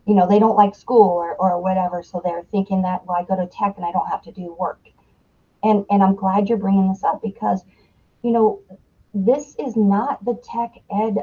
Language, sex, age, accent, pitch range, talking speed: English, female, 50-69, American, 195-240 Hz, 225 wpm